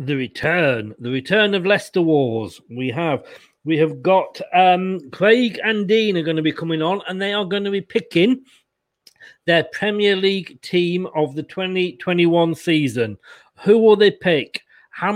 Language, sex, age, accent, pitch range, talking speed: English, male, 40-59, British, 150-190 Hz, 165 wpm